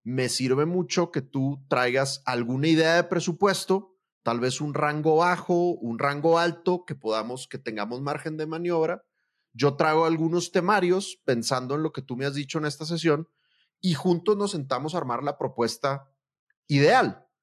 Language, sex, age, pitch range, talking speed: Spanish, male, 30-49, 115-160 Hz, 170 wpm